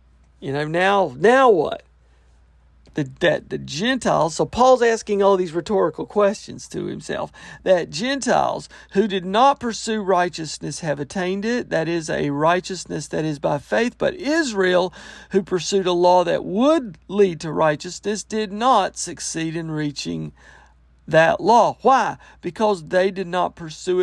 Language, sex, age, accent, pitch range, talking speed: English, male, 50-69, American, 150-215 Hz, 150 wpm